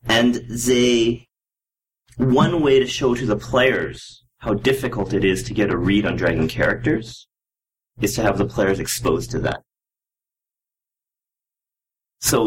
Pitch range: 105-125 Hz